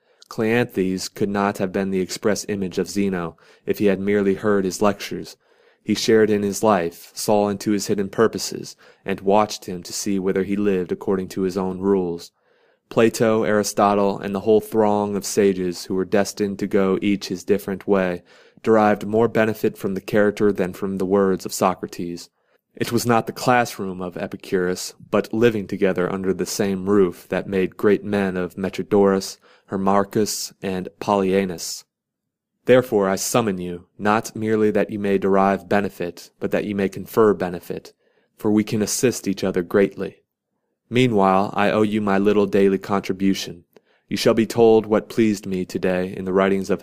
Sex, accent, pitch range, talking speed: male, American, 95-105 Hz, 175 wpm